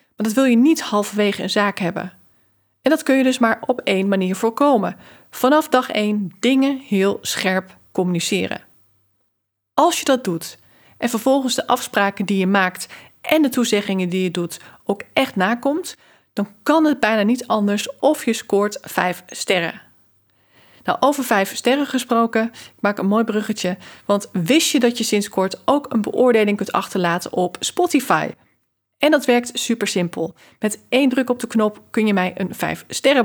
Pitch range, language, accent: 190-255 Hz, Dutch, Dutch